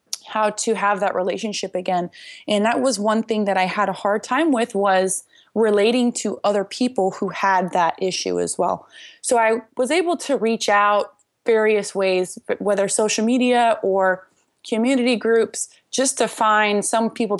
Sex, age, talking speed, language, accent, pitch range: female, 20-39, 170 wpm, English, American, 195-235 Hz